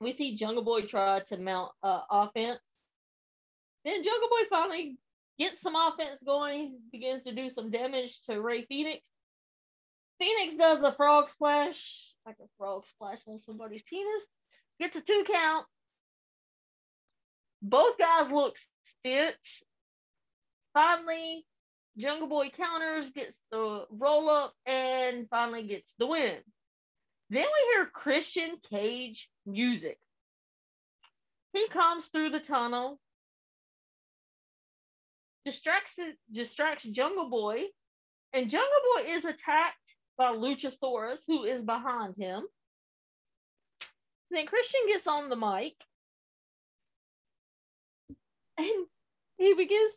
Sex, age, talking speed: female, 20-39, 115 wpm